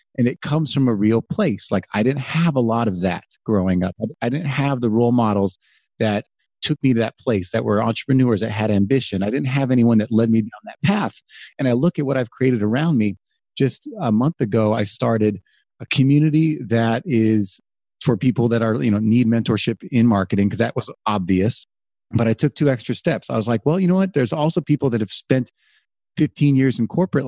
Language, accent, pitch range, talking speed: English, American, 110-135 Hz, 220 wpm